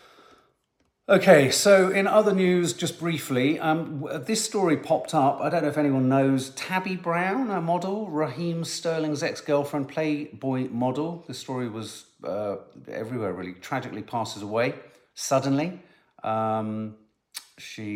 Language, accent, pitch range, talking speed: English, British, 95-140 Hz, 130 wpm